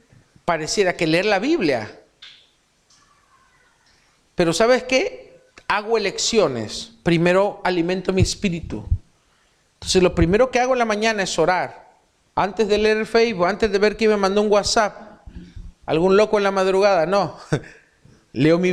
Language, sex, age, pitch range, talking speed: Spanish, male, 40-59, 155-210 Hz, 145 wpm